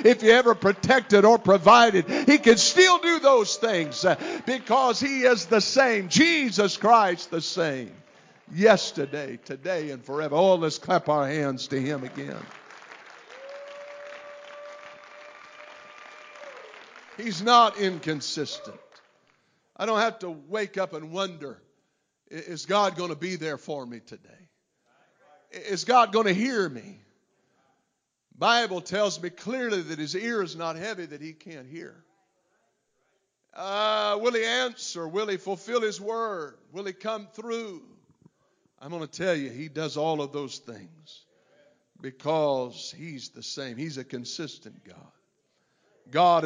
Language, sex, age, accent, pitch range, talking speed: English, male, 50-69, American, 150-225 Hz, 135 wpm